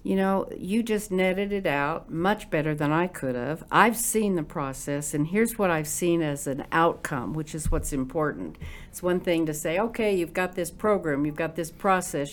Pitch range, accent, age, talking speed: 150-195 Hz, American, 60-79, 210 wpm